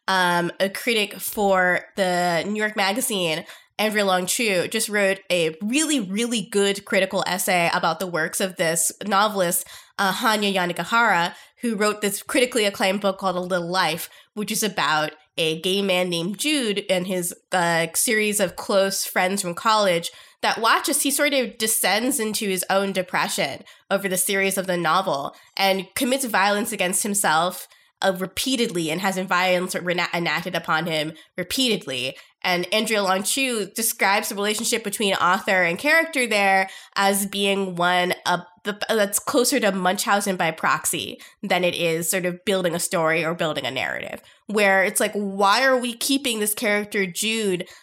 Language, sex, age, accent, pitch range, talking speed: English, female, 20-39, American, 180-225 Hz, 160 wpm